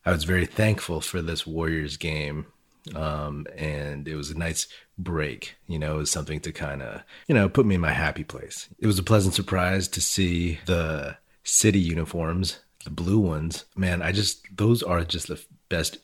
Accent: American